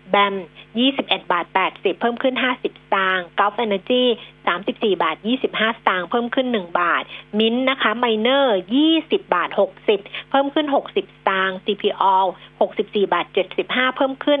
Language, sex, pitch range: Thai, female, 195-255 Hz